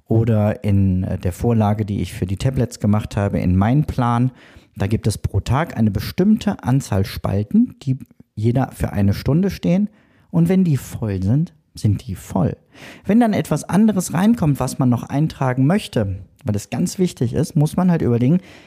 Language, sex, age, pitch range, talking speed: German, male, 40-59, 105-160 Hz, 175 wpm